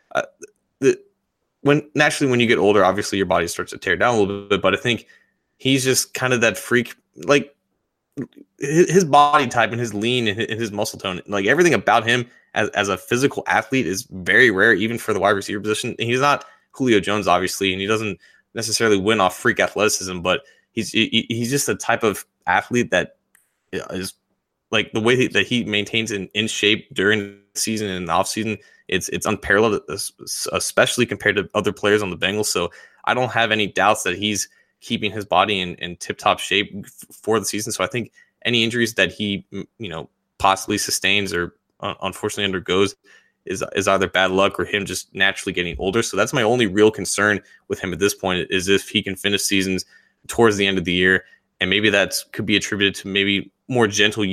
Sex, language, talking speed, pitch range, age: male, English, 210 wpm, 95-115 Hz, 20-39